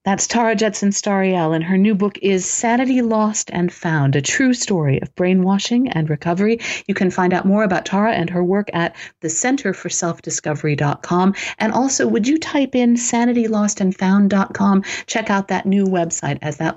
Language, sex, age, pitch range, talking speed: English, female, 50-69, 160-210 Hz, 160 wpm